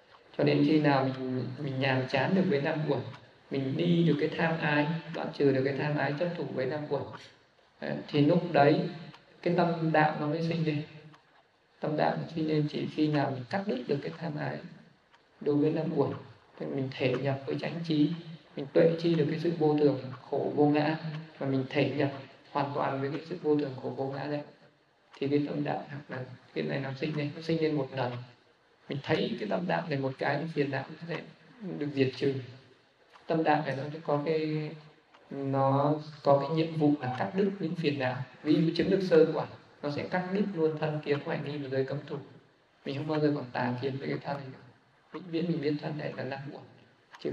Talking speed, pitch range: 225 wpm, 140-160 Hz